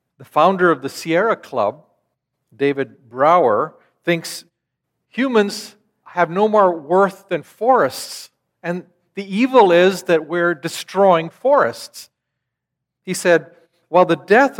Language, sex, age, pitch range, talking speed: English, male, 50-69, 140-180 Hz, 120 wpm